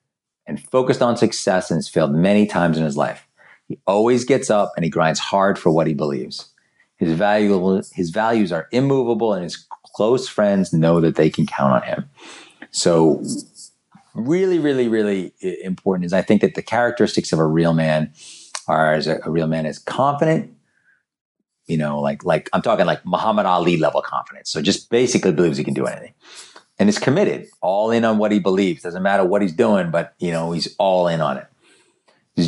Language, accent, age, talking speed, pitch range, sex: English, American, 40-59, 195 wpm, 85-115 Hz, male